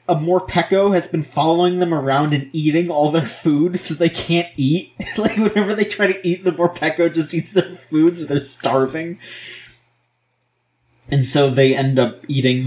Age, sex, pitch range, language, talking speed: 20-39, male, 120-165 Hz, English, 175 wpm